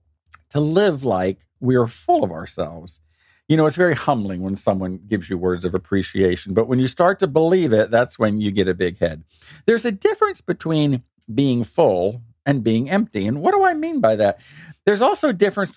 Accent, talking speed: American, 205 wpm